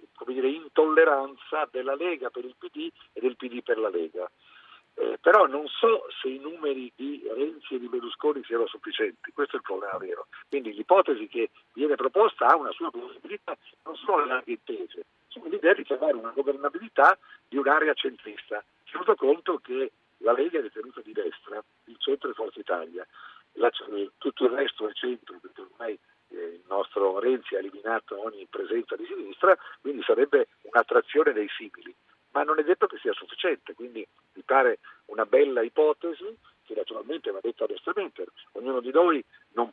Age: 50-69